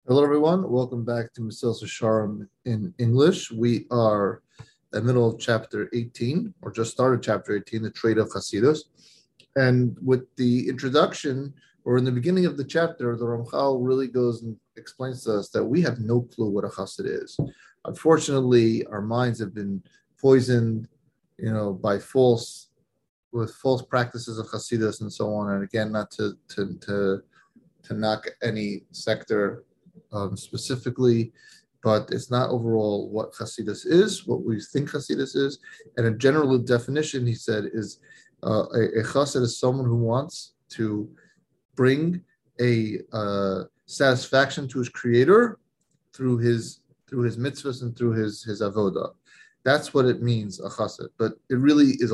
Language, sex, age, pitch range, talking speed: English, male, 30-49, 110-135 Hz, 160 wpm